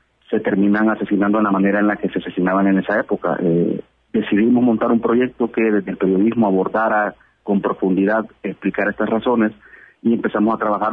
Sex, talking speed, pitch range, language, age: male, 180 wpm, 100-115 Hz, Spanish, 30-49